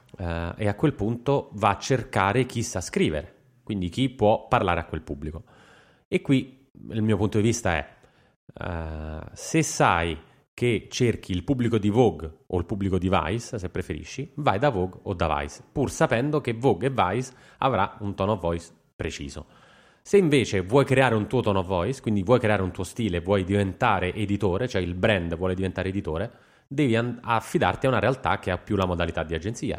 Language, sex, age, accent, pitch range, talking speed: Italian, male, 30-49, native, 95-120 Hz, 195 wpm